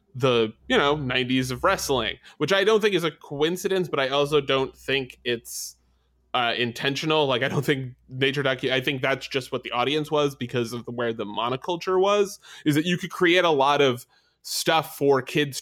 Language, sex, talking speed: English, male, 200 wpm